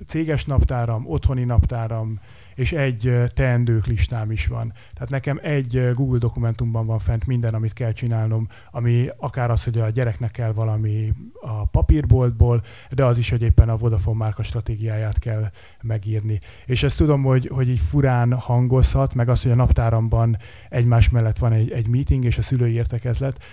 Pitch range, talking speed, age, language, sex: 110-130 Hz, 165 wpm, 30-49, Hungarian, male